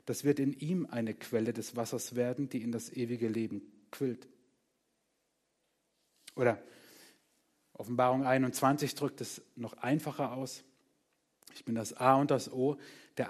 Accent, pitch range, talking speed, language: German, 120-145 Hz, 140 wpm, German